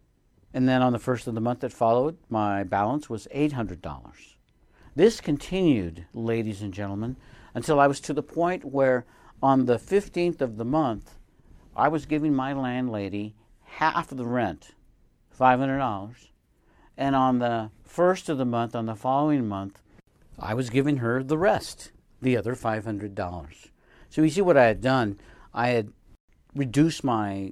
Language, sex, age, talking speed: English, male, 60-79, 160 wpm